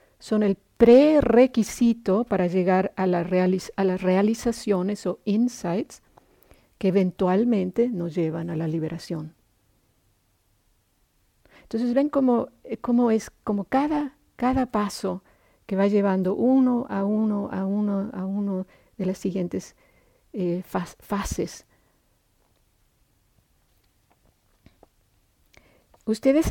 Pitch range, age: 165-220 Hz, 50-69